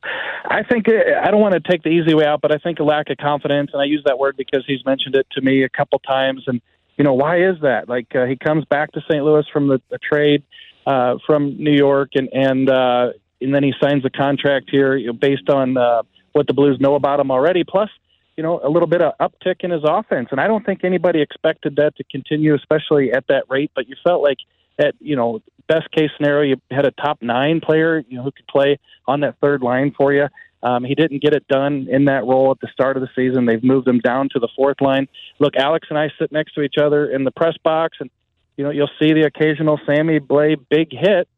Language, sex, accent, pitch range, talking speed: English, male, American, 130-150 Hz, 250 wpm